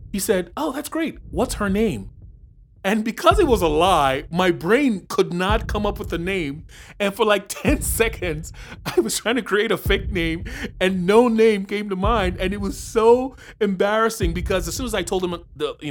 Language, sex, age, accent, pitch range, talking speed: English, male, 30-49, American, 135-205 Hz, 210 wpm